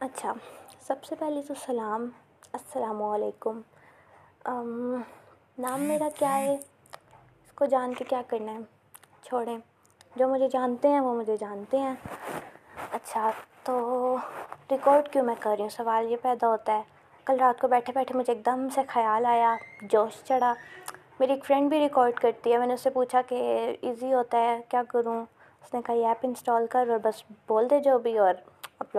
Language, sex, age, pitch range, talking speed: Urdu, female, 20-39, 230-275 Hz, 175 wpm